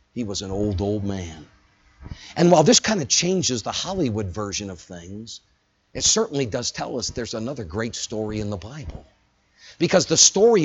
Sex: male